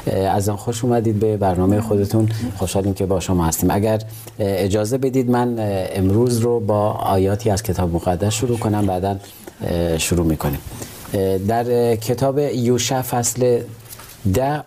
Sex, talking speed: male, 135 wpm